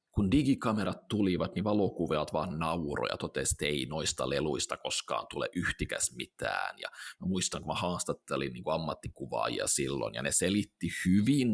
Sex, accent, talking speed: male, native, 145 wpm